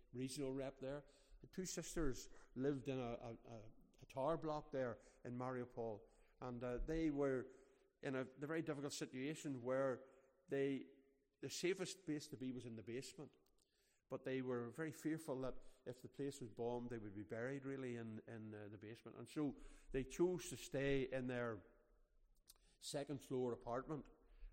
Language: English